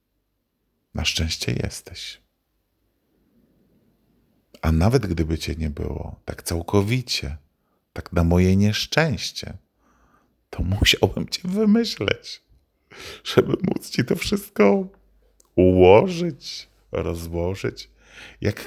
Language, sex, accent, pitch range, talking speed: Polish, male, native, 80-105 Hz, 85 wpm